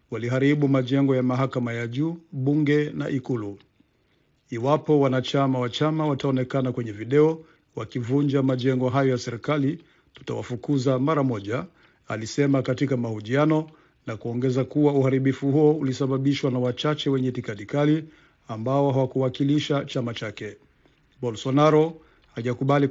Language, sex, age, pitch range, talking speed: Swahili, male, 50-69, 125-145 Hz, 115 wpm